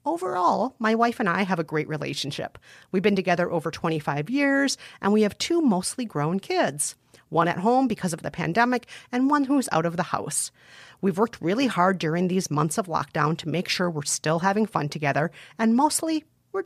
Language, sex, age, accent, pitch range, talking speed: English, female, 40-59, American, 165-230 Hz, 200 wpm